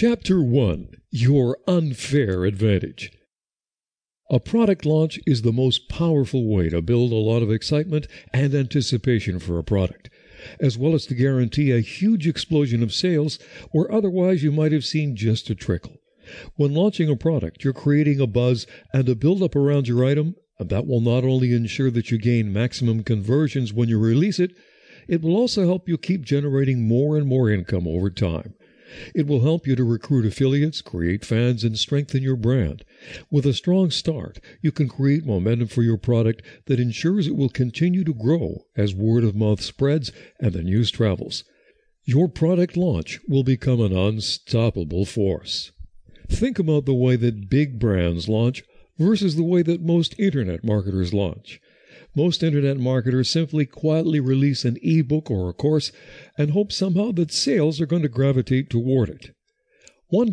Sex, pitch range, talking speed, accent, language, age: male, 115-155 Hz, 170 wpm, American, English, 60-79